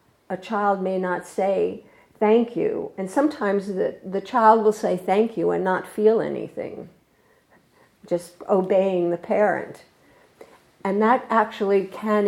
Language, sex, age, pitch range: English, female, 50-69, 190-230 Hz